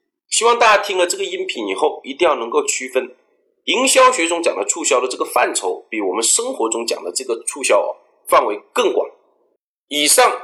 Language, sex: Chinese, male